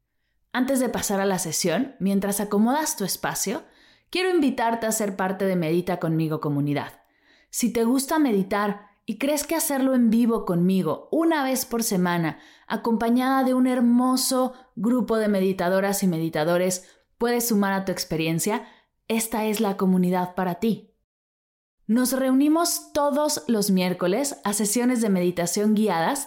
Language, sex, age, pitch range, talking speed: Spanish, female, 30-49, 195-255 Hz, 145 wpm